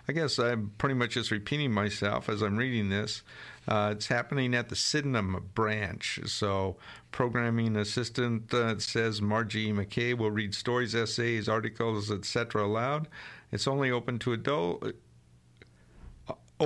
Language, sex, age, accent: English, male, 50-69, American